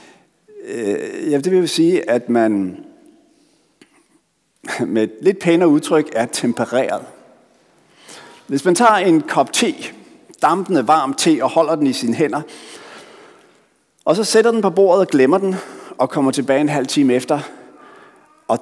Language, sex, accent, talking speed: Danish, male, native, 140 wpm